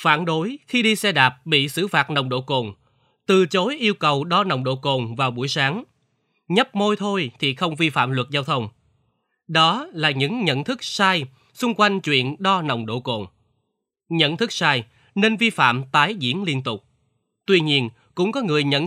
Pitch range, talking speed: 130-185 Hz, 195 wpm